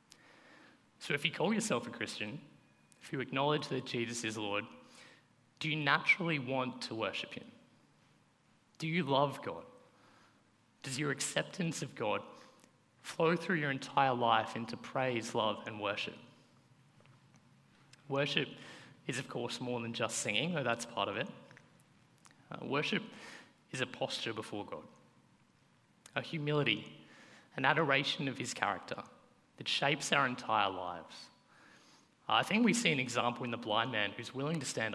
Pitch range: 120-150 Hz